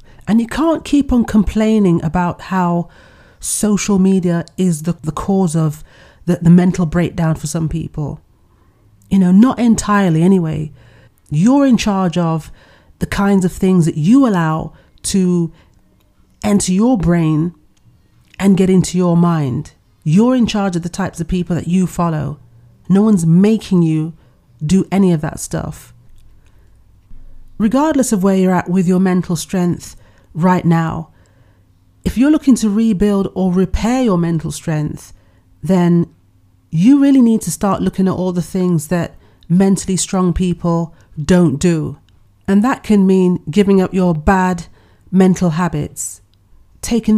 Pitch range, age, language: 155-190 Hz, 40-59, English